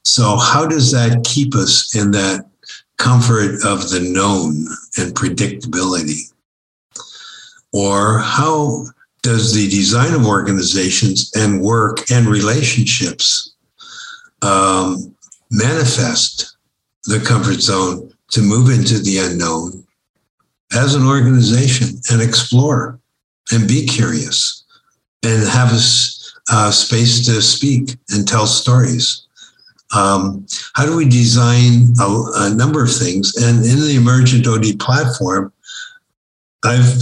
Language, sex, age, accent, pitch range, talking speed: English, male, 60-79, American, 110-130 Hz, 115 wpm